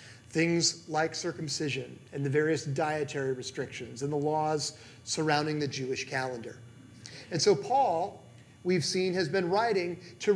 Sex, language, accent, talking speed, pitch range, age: male, English, American, 140 wpm, 130-180 Hz, 40-59